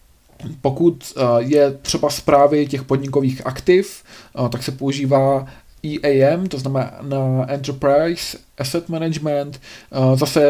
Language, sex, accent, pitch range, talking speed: Czech, male, native, 120-140 Hz, 95 wpm